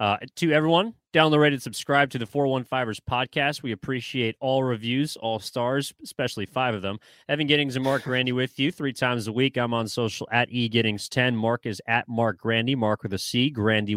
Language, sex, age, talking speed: English, male, 30-49, 200 wpm